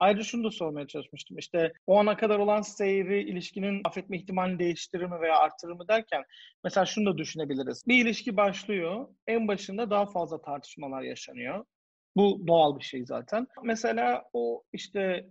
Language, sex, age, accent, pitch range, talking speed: Turkish, male, 40-59, native, 165-225 Hz, 160 wpm